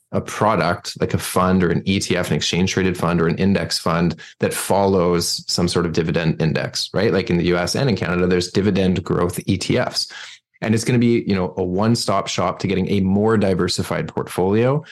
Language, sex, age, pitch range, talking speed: English, male, 20-39, 90-105 Hz, 210 wpm